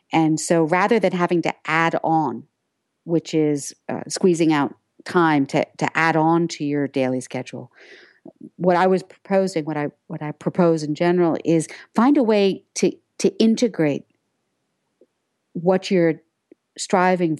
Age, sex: 50-69, female